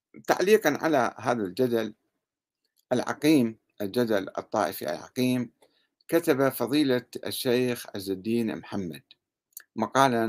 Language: Arabic